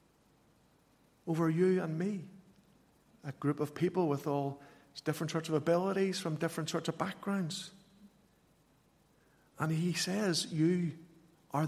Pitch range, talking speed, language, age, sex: 145-175 Hz, 125 wpm, English, 50-69, male